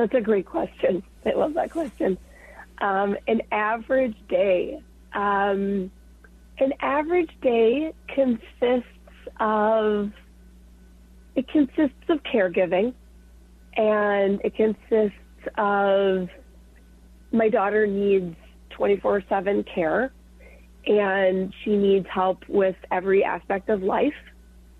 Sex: female